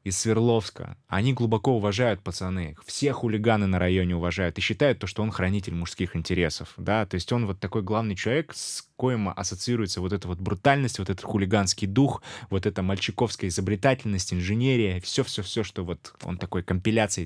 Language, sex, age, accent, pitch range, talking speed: Russian, male, 20-39, native, 90-110 Hz, 170 wpm